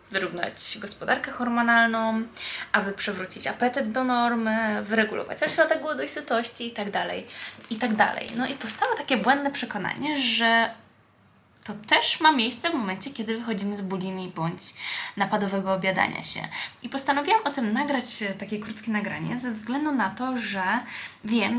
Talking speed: 140 wpm